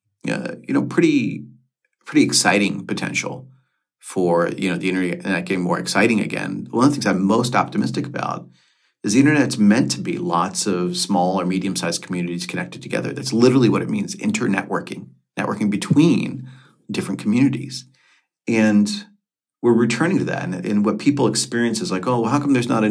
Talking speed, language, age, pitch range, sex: 175 wpm, English, 40-59, 95-115 Hz, male